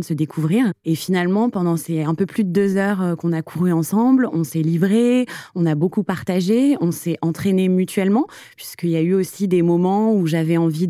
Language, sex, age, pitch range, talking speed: French, female, 20-39, 165-200 Hz, 210 wpm